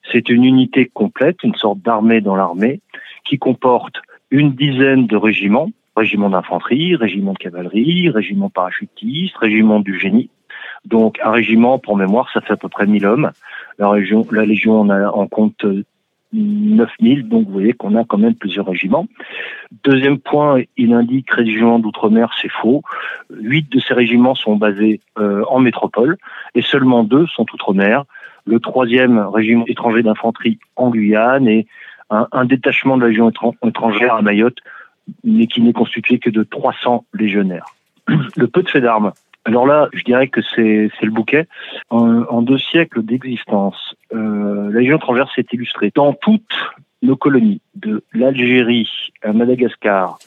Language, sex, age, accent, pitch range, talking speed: French, male, 40-59, French, 105-130 Hz, 160 wpm